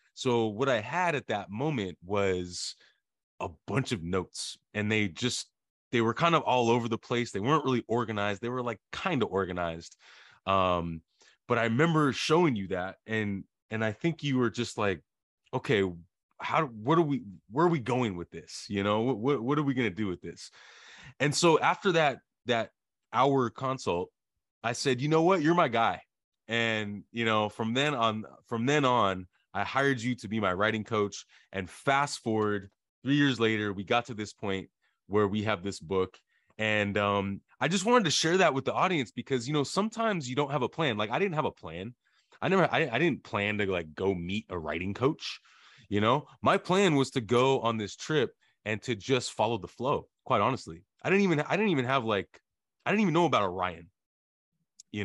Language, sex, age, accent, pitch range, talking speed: English, male, 30-49, American, 100-140 Hz, 205 wpm